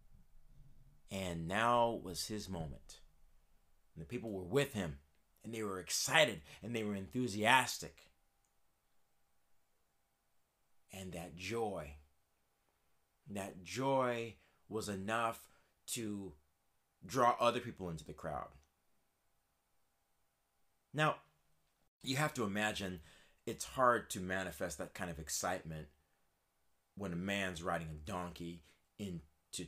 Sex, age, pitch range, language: male, 30-49, 80-105 Hz, English